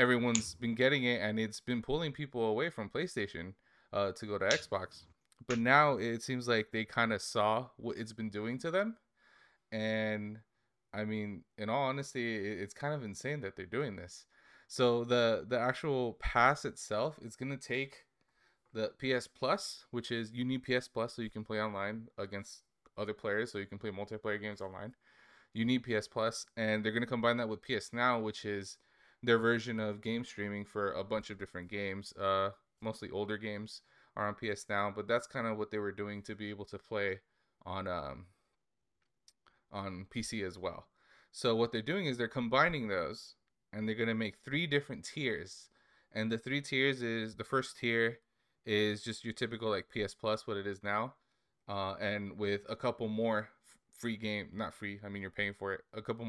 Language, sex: English, male